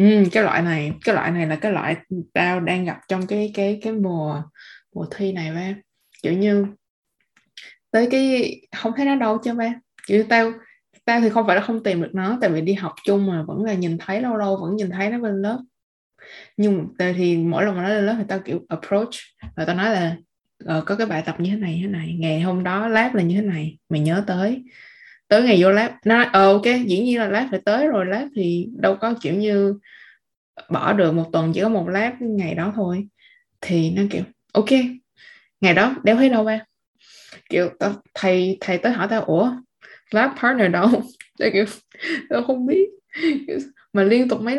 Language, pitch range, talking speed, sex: Vietnamese, 180-230 Hz, 215 wpm, female